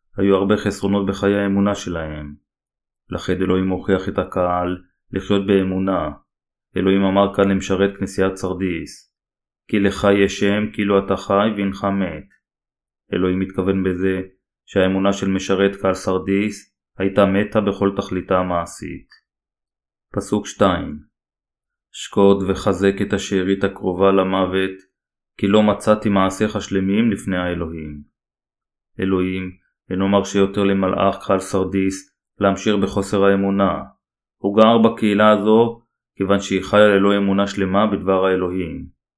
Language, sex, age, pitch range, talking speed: Hebrew, male, 20-39, 95-100 Hz, 120 wpm